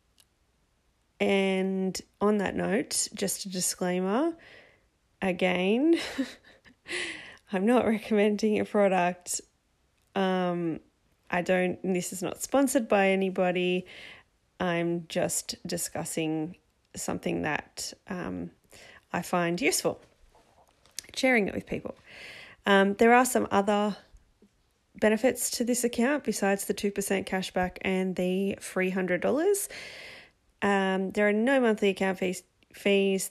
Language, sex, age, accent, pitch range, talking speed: English, female, 20-39, Australian, 180-210 Hz, 105 wpm